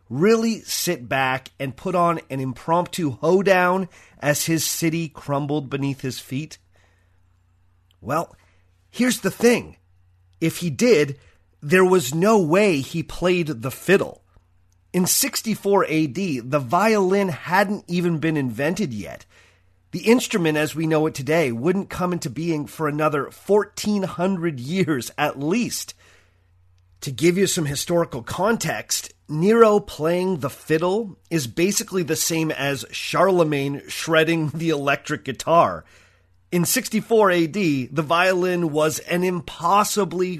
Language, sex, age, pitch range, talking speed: English, male, 30-49, 120-180 Hz, 130 wpm